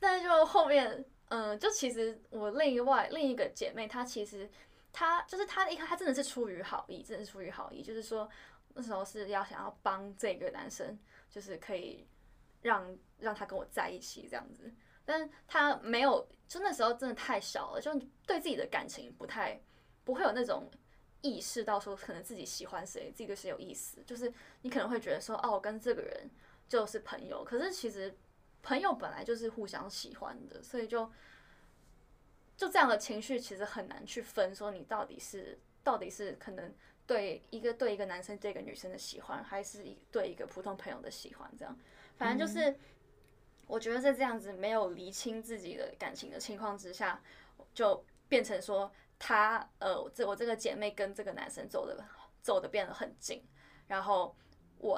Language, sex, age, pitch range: Chinese, female, 10-29, 205-280 Hz